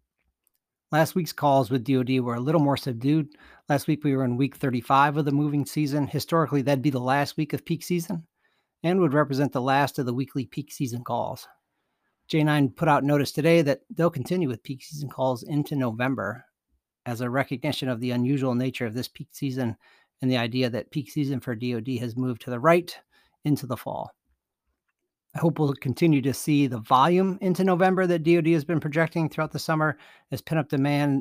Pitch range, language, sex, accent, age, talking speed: 130-155 Hz, English, male, American, 40-59, 200 wpm